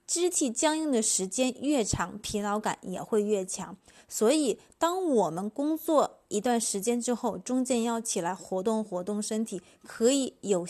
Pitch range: 190-260 Hz